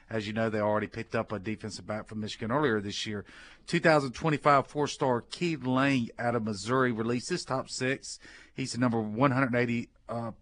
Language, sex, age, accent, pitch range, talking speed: English, male, 40-59, American, 110-130 Hz, 180 wpm